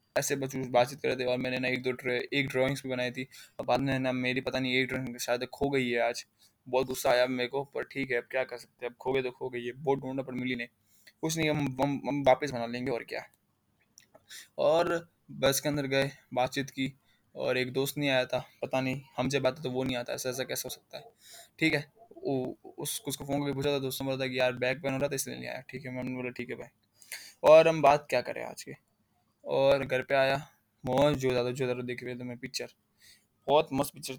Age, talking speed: 20-39, 245 wpm